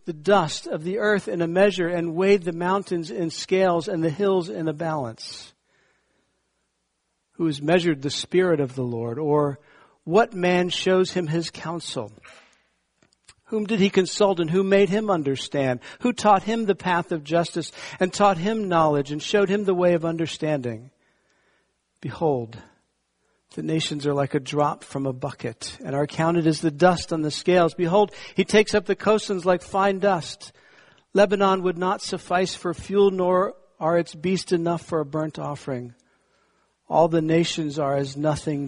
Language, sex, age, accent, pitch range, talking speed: English, male, 60-79, American, 145-185 Hz, 175 wpm